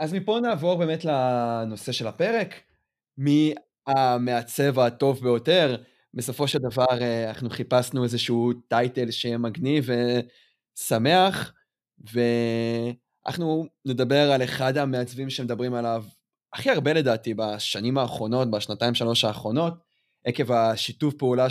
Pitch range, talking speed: 120-155 Hz, 110 wpm